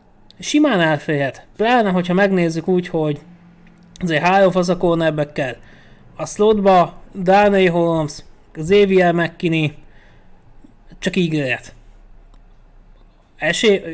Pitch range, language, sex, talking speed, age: 150-180 Hz, Hungarian, male, 85 wpm, 20-39